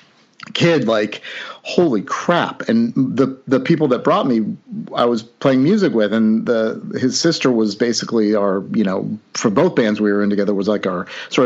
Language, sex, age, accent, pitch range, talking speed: English, male, 40-59, American, 105-130 Hz, 190 wpm